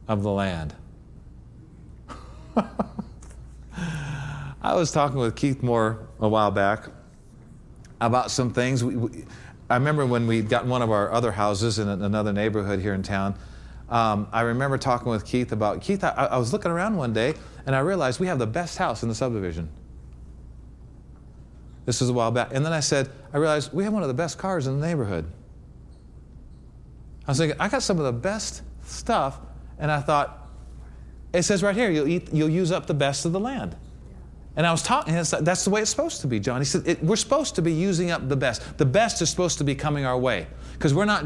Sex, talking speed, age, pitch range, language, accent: male, 205 wpm, 40-59, 100-165 Hz, English, American